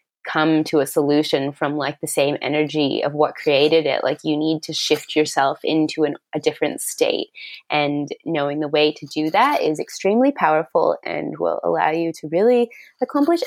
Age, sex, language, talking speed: 20-39, female, English, 180 wpm